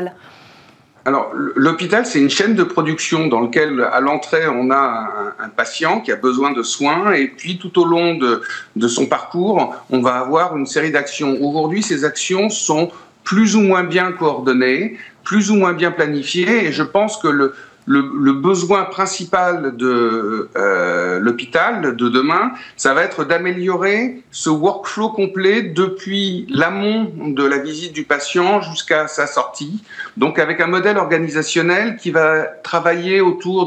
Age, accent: 50-69, French